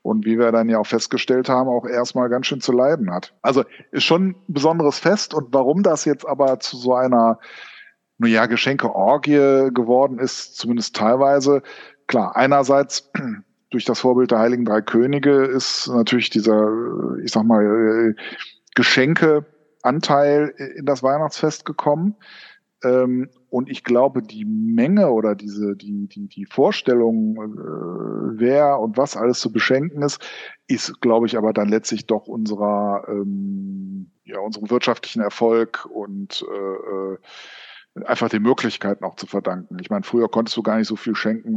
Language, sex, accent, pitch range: German, male, German, 105-145 Hz